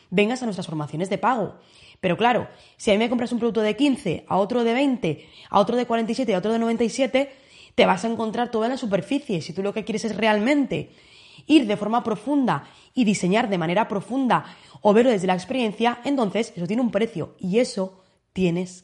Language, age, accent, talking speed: Spanish, 20-39, Spanish, 215 wpm